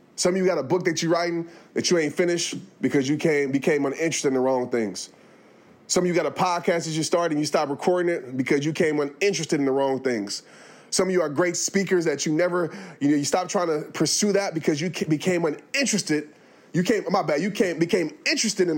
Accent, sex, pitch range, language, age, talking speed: American, male, 130-180 Hz, English, 20-39, 240 wpm